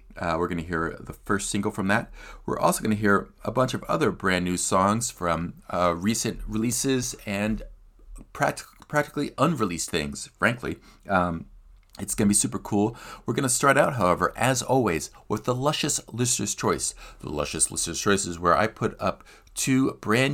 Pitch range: 85-115 Hz